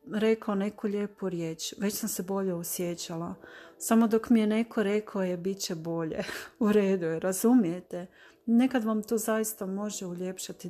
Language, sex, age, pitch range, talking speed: Croatian, female, 40-59, 180-215 Hz, 165 wpm